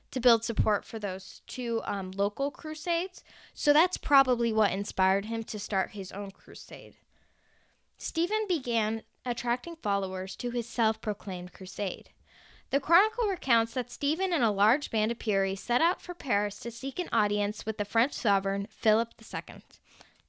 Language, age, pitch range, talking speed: English, 10-29, 205-275 Hz, 155 wpm